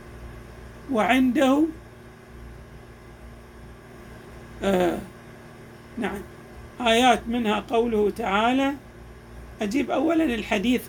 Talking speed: 55 wpm